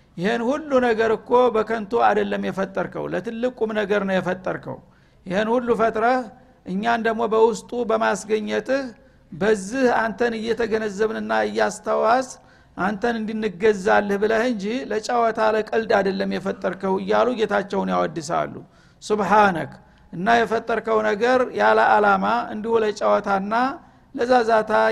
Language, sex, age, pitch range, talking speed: Amharic, male, 60-79, 205-230 Hz, 95 wpm